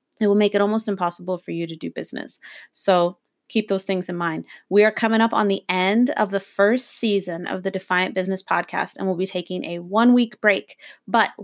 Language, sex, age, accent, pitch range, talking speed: English, female, 30-49, American, 180-215 Hz, 215 wpm